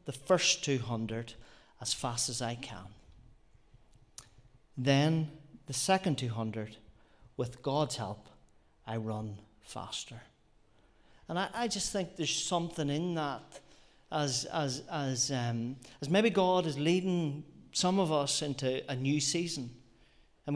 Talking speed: 130 wpm